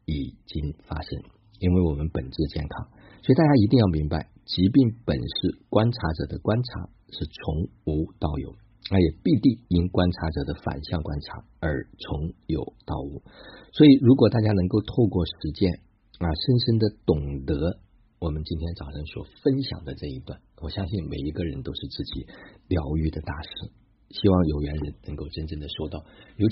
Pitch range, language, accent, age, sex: 80-110 Hz, Chinese, native, 50-69, male